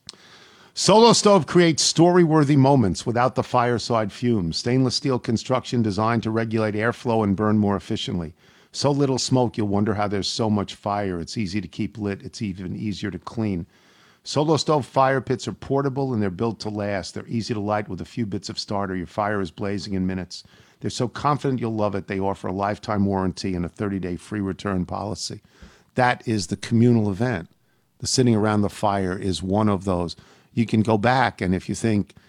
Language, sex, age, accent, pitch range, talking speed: English, male, 50-69, American, 100-135 Hz, 195 wpm